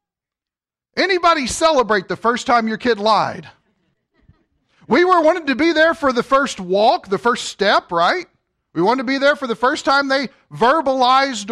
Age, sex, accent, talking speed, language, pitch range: 40-59, male, American, 170 wpm, English, 165-270 Hz